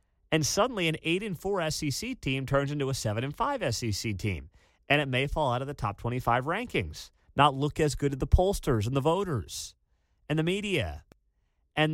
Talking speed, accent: 190 wpm, American